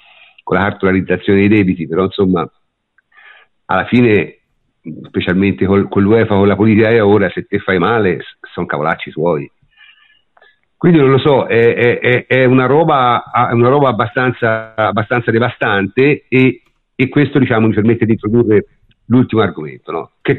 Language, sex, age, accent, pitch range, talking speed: Italian, male, 50-69, native, 105-130 Hz, 155 wpm